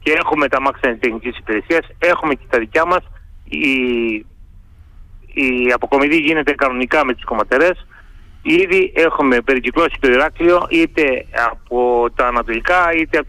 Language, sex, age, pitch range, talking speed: Greek, male, 30-49, 125-170 Hz, 140 wpm